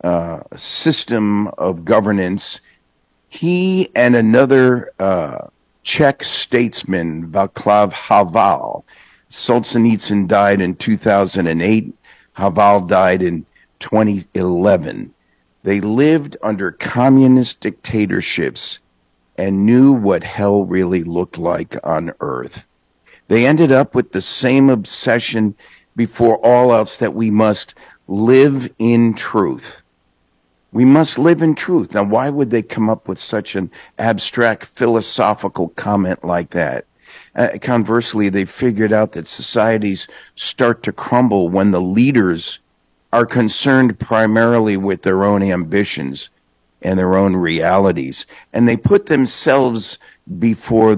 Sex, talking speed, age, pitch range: male, 115 wpm, 50-69, 90-120 Hz